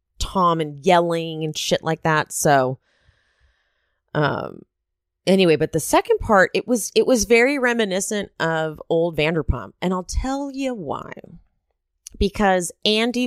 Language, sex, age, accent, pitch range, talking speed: English, female, 30-49, American, 135-200 Hz, 135 wpm